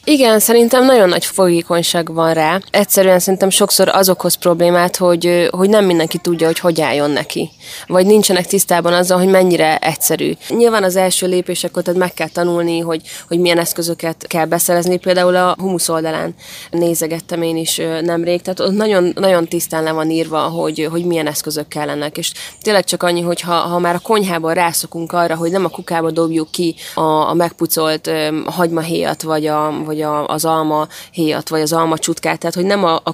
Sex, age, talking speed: female, 20-39, 180 wpm